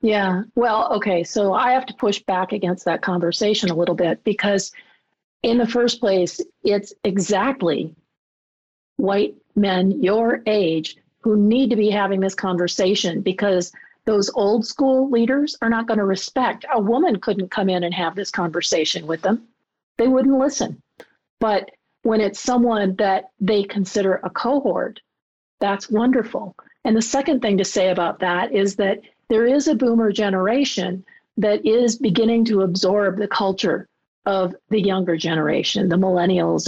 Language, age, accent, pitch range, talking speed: English, 40-59, American, 190-235 Hz, 155 wpm